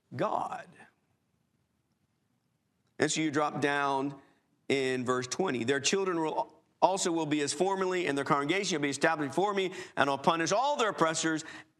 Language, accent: English, American